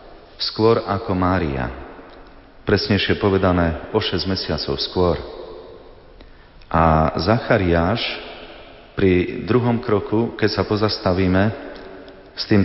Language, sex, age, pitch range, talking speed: Slovak, male, 30-49, 95-115 Hz, 90 wpm